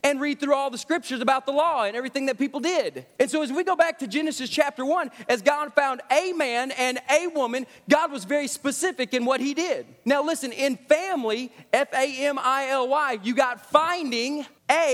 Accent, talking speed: American, 195 wpm